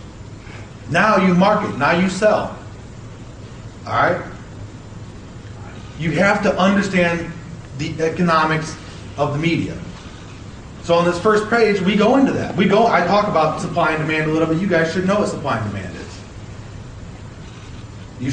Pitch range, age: 115-185 Hz, 40-59